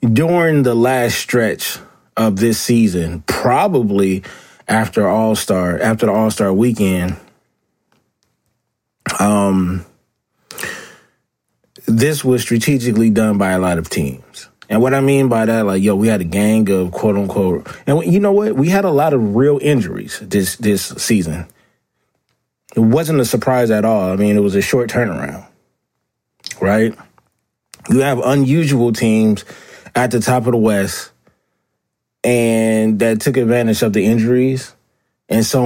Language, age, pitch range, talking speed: English, 30-49, 105-130 Hz, 145 wpm